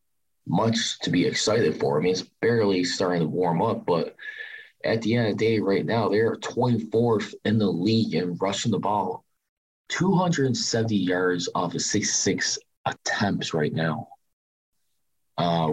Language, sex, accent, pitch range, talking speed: English, male, American, 95-115 Hz, 155 wpm